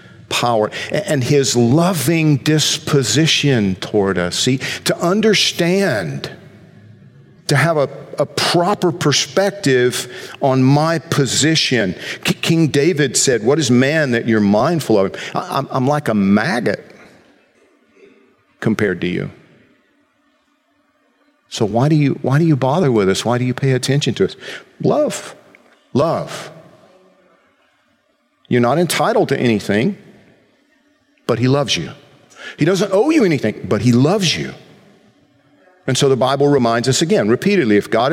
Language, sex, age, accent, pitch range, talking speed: English, male, 50-69, American, 115-165 Hz, 135 wpm